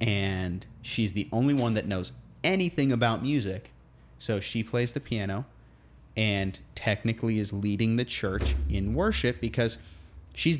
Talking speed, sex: 140 wpm, male